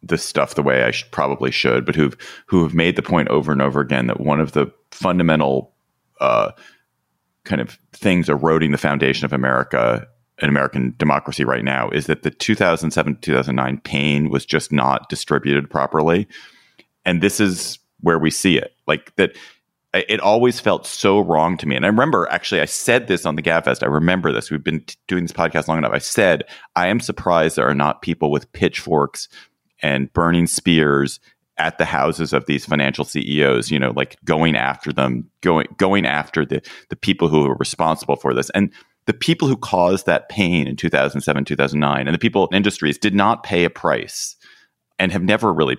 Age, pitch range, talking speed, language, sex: 30-49, 70-85 Hz, 190 wpm, English, male